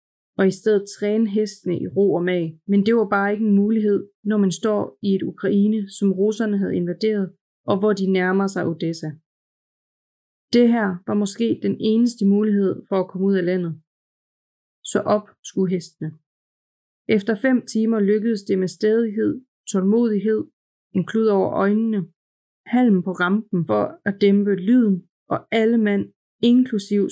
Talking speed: 160 wpm